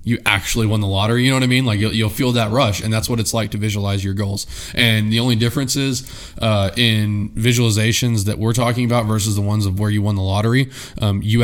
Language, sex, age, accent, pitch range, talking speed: English, male, 20-39, American, 100-115 Hz, 250 wpm